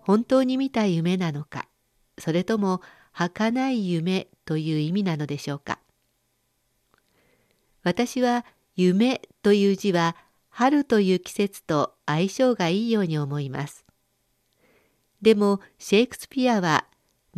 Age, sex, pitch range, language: 50-69, female, 160-225 Hz, Japanese